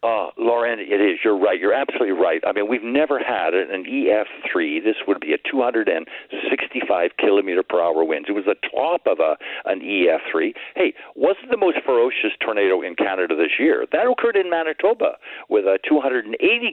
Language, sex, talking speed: English, male, 185 wpm